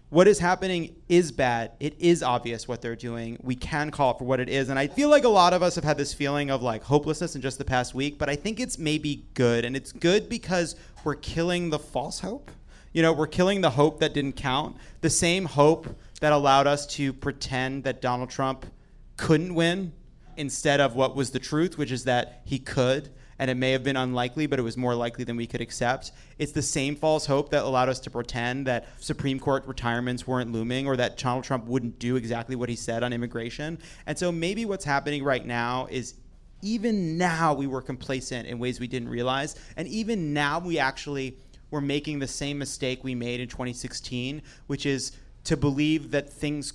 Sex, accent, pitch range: male, American, 125-150 Hz